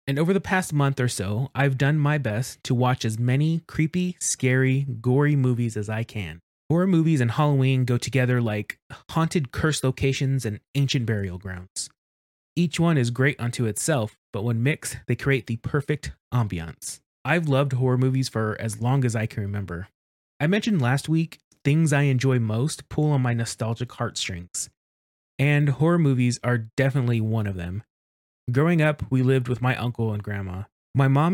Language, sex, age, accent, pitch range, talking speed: English, male, 30-49, American, 110-140 Hz, 180 wpm